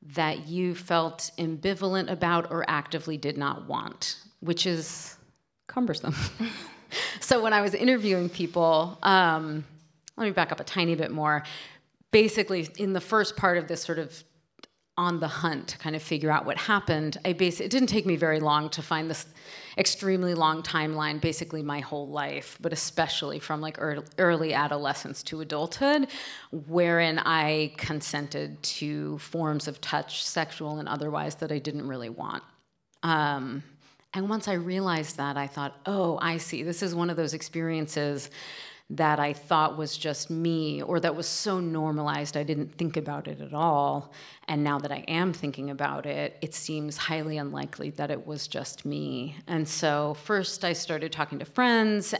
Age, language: 30-49, English